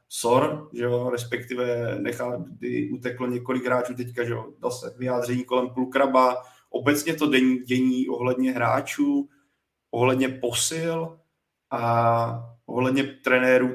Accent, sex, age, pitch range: native, male, 20-39, 120-130 Hz